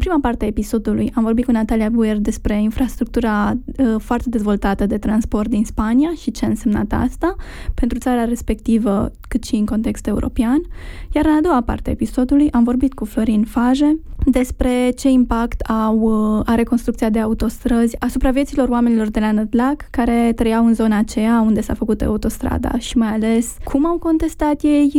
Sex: female